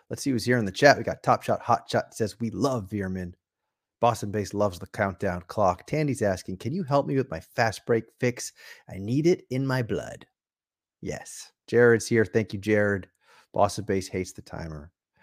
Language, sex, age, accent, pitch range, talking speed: English, male, 30-49, American, 100-130 Hz, 200 wpm